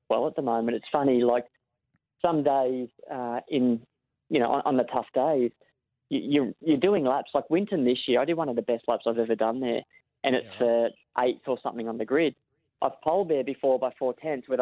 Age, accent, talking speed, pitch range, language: 20-39, Australian, 220 wpm, 120-135 Hz, English